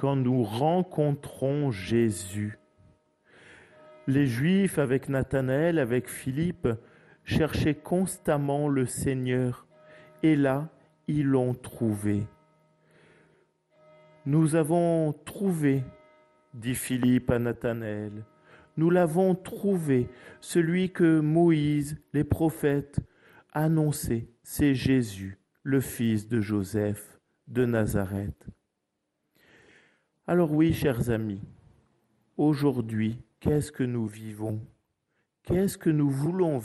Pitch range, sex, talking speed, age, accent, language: 115-160 Hz, male, 90 wpm, 50-69, French, French